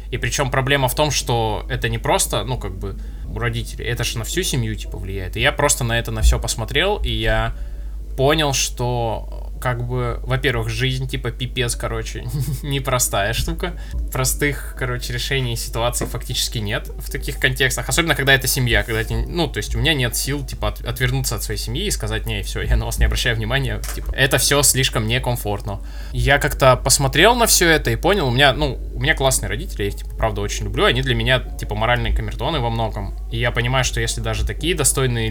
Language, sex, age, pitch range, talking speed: Russian, male, 20-39, 110-130 Hz, 205 wpm